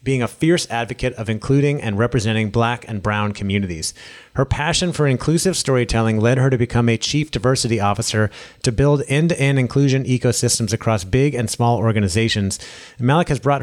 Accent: American